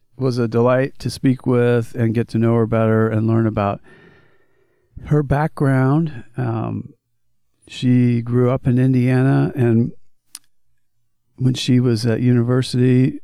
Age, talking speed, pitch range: 50-69, 130 wpm, 110-130 Hz